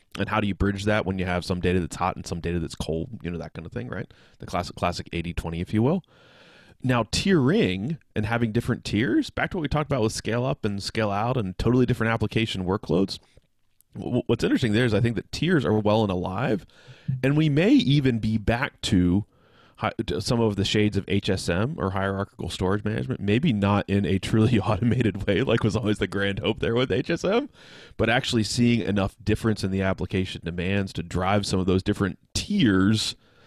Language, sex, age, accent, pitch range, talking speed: English, male, 20-39, American, 95-115 Hz, 210 wpm